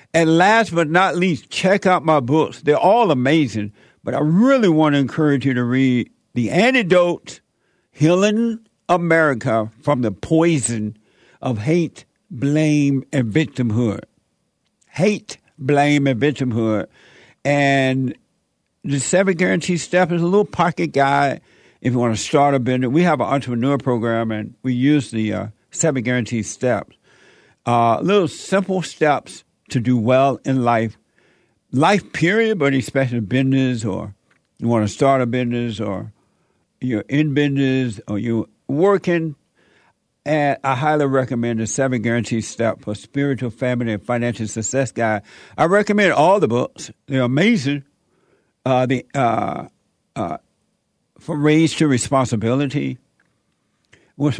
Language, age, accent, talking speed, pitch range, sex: English, 60-79, American, 140 wpm, 120-160 Hz, male